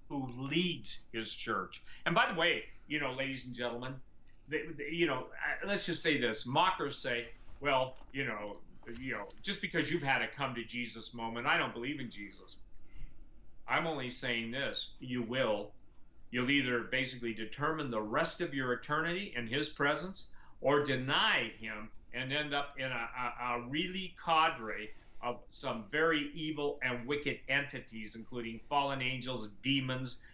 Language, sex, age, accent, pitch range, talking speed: English, male, 50-69, American, 120-155 Hz, 165 wpm